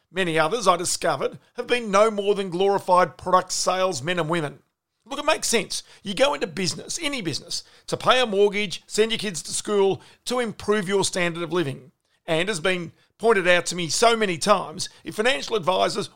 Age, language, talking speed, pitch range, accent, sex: 50-69, English, 195 wpm, 170-220 Hz, Australian, male